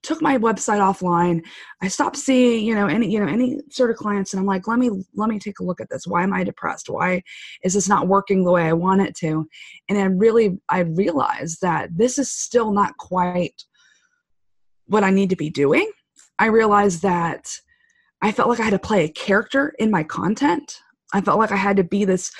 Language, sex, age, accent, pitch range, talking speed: English, female, 20-39, American, 175-220 Hz, 220 wpm